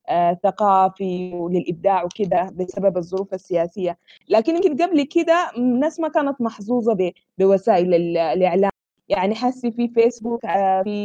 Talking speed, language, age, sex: 135 wpm, Arabic, 20-39, female